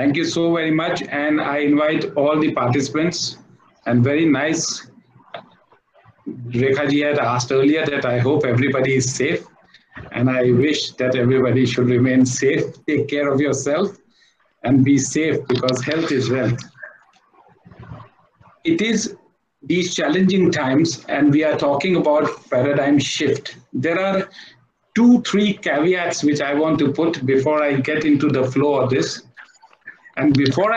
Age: 50-69